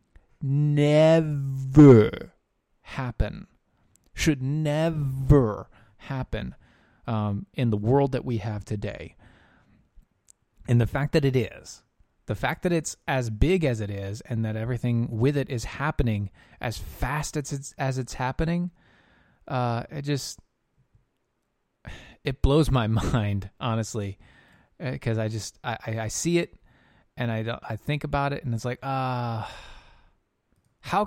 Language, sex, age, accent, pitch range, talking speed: English, male, 20-39, American, 110-145 Hz, 130 wpm